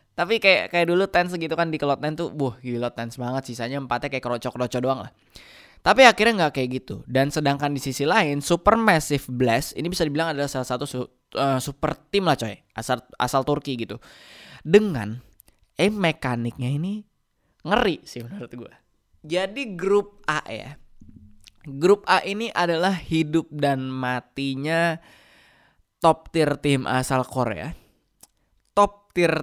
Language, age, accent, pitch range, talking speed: Indonesian, 20-39, native, 125-170 Hz, 155 wpm